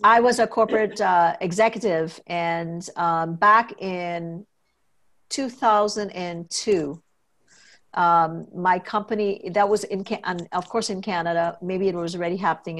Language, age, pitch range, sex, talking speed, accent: English, 50-69, 175-225 Hz, female, 125 wpm, American